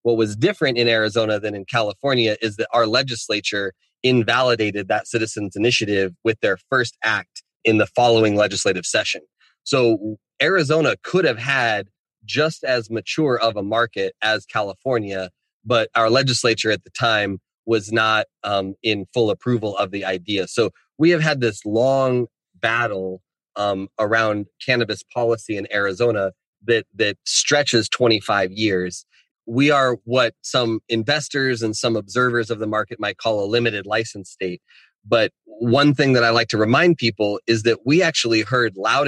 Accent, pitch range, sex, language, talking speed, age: American, 105-120 Hz, male, English, 160 wpm, 30-49